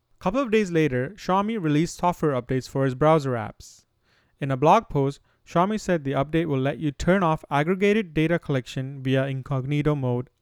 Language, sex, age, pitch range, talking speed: English, male, 30-49, 130-165 Hz, 180 wpm